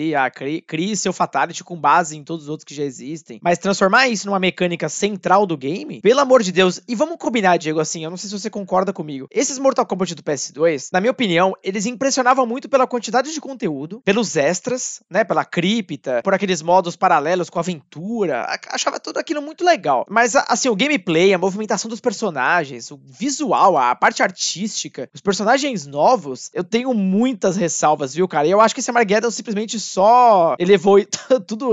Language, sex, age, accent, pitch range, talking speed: Portuguese, male, 20-39, Brazilian, 155-225 Hz, 195 wpm